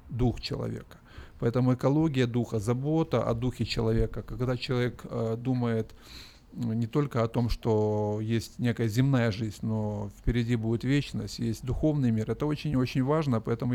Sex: male